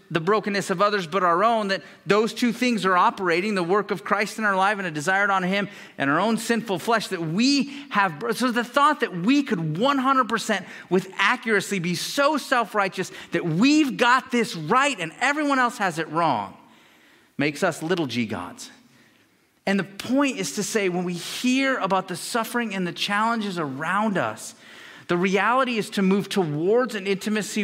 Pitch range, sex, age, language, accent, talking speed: 175-230 Hz, male, 40-59, English, American, 185 wpm